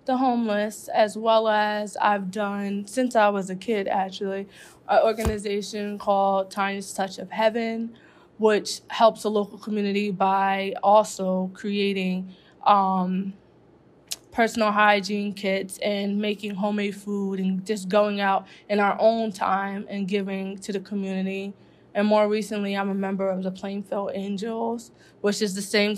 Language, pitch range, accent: English, 195-210 Hz, American